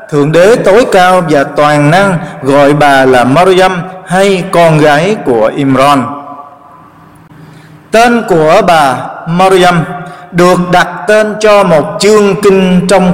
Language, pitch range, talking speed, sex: Vietnamese, 150-200 Hz, 130 wpm, male